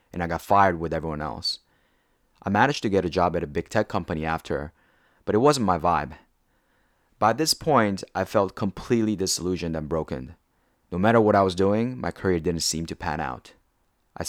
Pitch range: 80-100 Hz